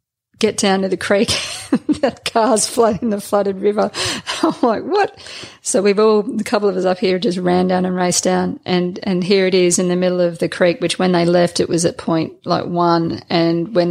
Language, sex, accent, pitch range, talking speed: English, female, Australian, 170-220 Hz, 225 wpm